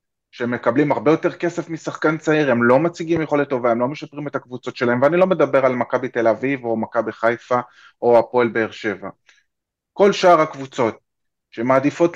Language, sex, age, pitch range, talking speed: Hebrew, male, 30-49, 115-150 Hz, 175 wpm